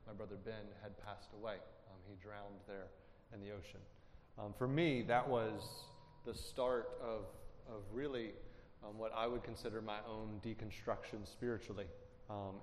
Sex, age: male, 30-49